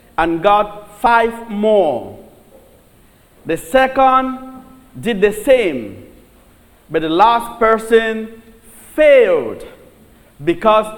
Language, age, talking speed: English, 50-69, 80 wpm